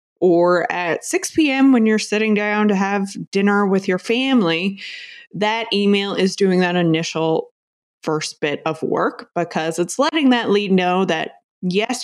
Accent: American